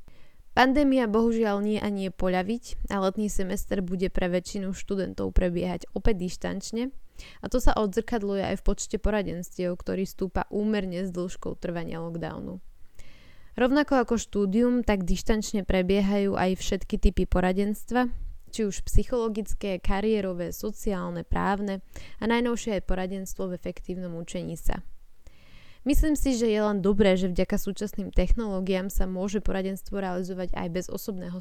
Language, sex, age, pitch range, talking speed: Slovak, female, 10-29, 185-220 Hz, 140 wpm